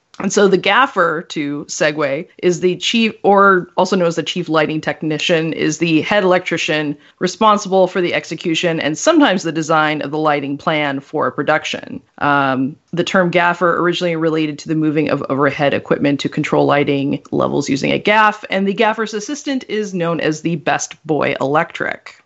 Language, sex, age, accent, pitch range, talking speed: English, female, 30-49, American, 150-190 Hz, 175 wpm